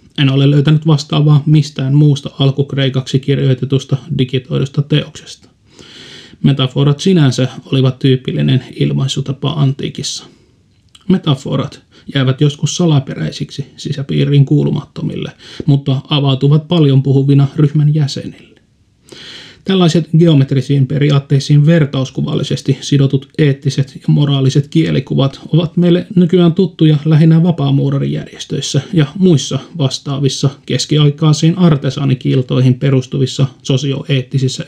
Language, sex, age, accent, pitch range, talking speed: Finnish, male, 30-49, native, 135-150 Hz, 85 wpm